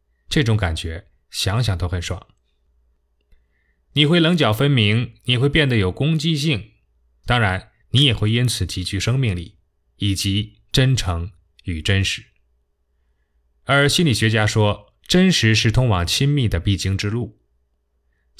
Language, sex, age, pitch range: Chinese, male, 20-39, 85-120 Hz